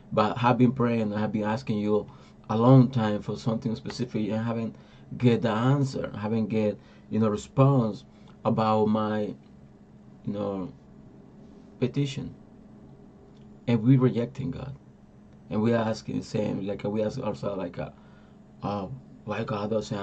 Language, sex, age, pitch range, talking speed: Spanish, male, 30-49, 100-125 Hz, 150 wpm